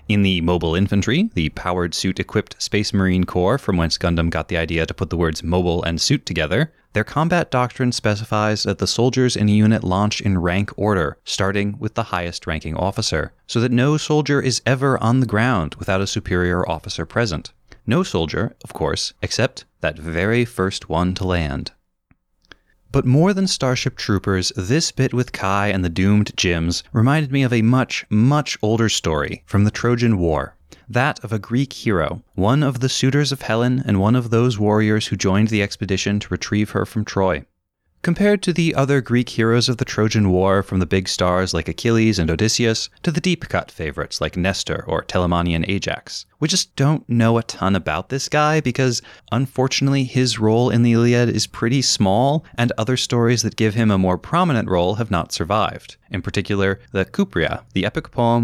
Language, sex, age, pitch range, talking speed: English, male, 30-49, 95-125 Hz, 190 wpm